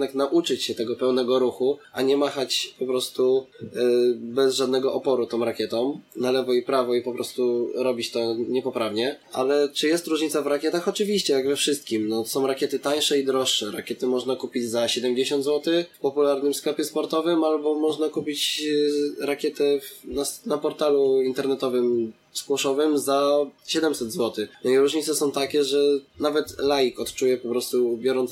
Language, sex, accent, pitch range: Polish, male, native, 125-145 Hz